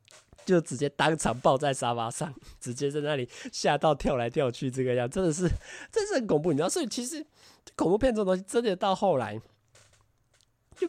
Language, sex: Chinese, male